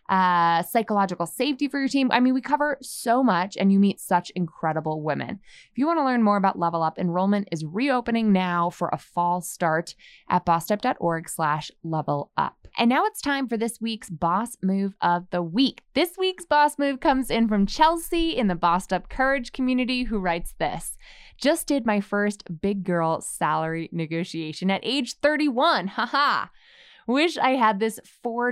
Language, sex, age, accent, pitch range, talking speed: English, female, 20-39, American, 180-260 Hz, 185 wpm